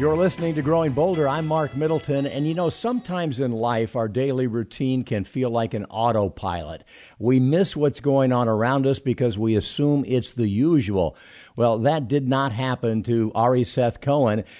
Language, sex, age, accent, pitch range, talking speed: English, male, 50-69, American, 115-150 Hz, 180 wpm